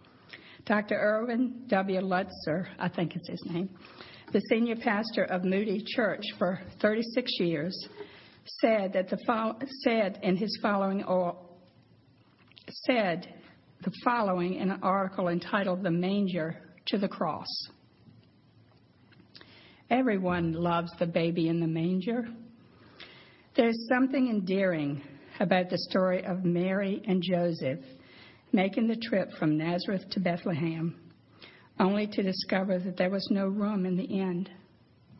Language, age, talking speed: English, 50-69, 125 wpm